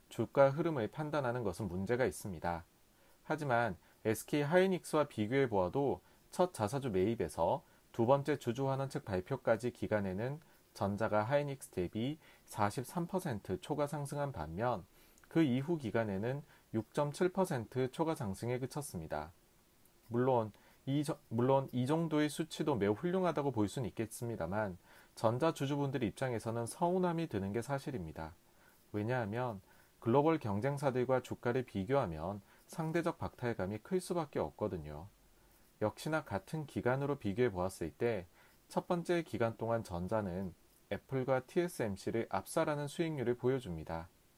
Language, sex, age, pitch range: Korean, male, 30-49, 105-150 Hz